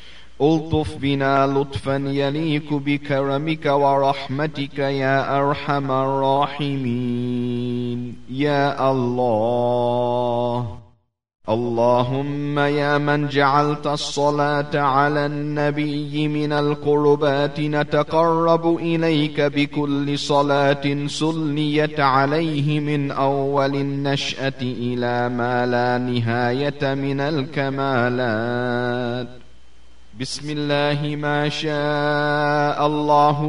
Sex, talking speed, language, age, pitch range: male, 70 wpm, English, 30-49, 135-150 Hz